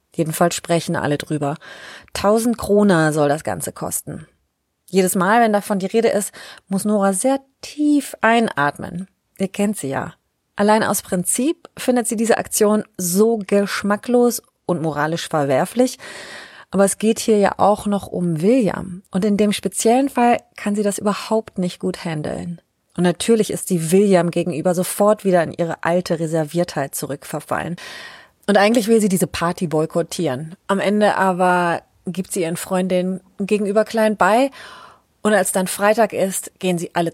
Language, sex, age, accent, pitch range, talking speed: German, female, 30-49, German, 170-210 Hz, 155 wpm